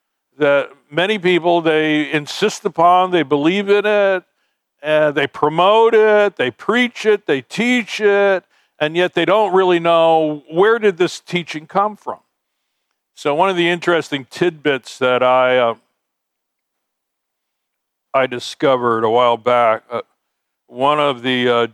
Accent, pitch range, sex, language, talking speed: American, 120-165 Hz, male, English, 140 wpm